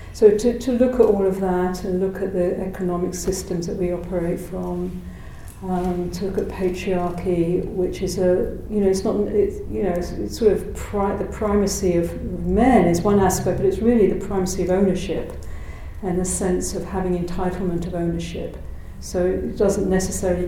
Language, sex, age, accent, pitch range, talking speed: English, female, 50-69, British, 165-190 Hz, 180 wpm